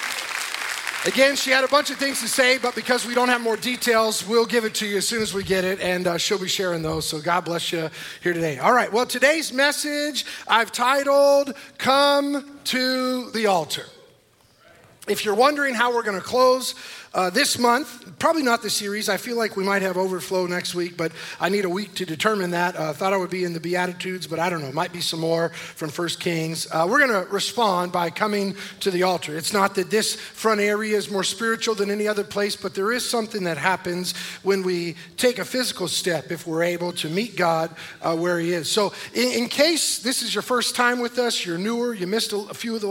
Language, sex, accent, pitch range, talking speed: English, male, American, 180-240 Hz, 235 wpm